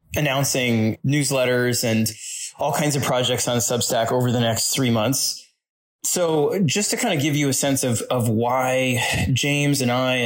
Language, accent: English, American